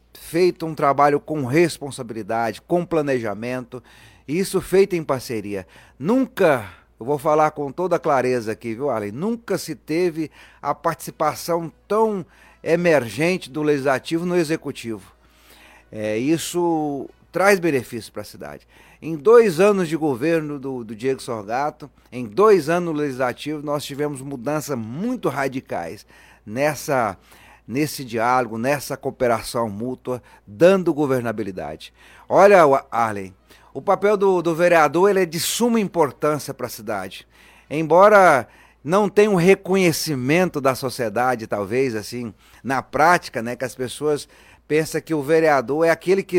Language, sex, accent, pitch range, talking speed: Portuguese, male, Brazilian, 125-165 Hz, 135 wpm